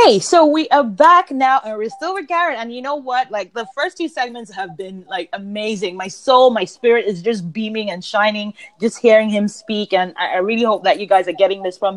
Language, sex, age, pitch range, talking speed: English, female, 20-39, 200-265 Hz, 240 wpm